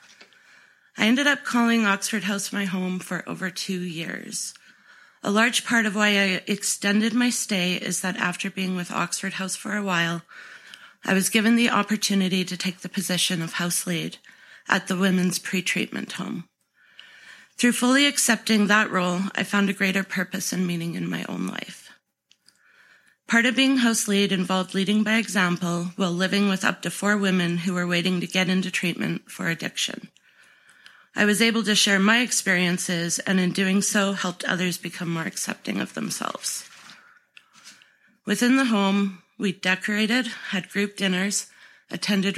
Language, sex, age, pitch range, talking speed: English, female, 30-49, 185-215 Hz, 165 wpm